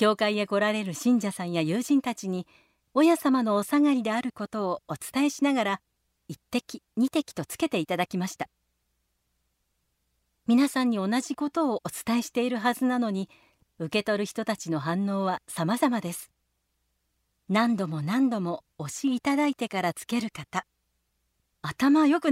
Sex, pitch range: female, 170-265 Hz